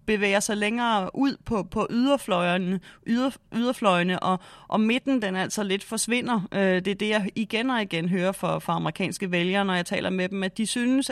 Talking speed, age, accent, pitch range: 195 wpm, 30-49, native, 175-215 Hz